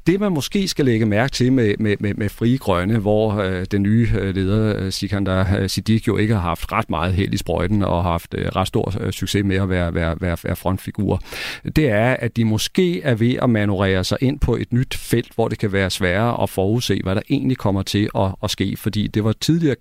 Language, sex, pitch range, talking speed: Danish, male, 95-120 Hz, 225 wpm